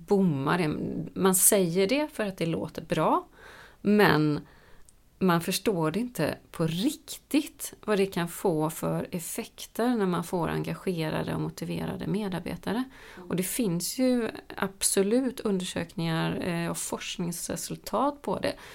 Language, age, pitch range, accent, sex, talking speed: Swedish, 30-49, 165-205 Hz, native, female, 125 wpm